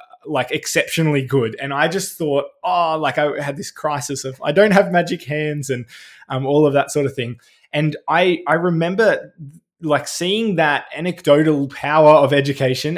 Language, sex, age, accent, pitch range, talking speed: English, male, 20-39, Australian, 130-160 Hz, 175 wpm